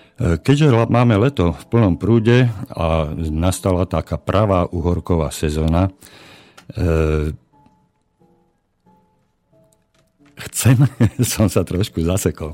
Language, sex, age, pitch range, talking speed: Slovak, male, 50-69, 80-95 Hz, 60 wpm